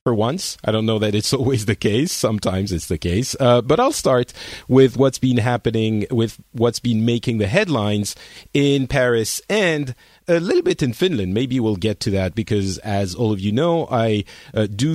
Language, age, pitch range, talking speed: English, 40-59, 105-130 Hz, 200 wpm